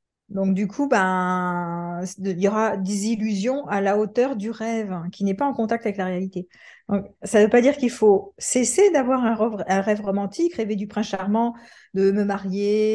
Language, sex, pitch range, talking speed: French, female, 190-230 Hz, 200 wpm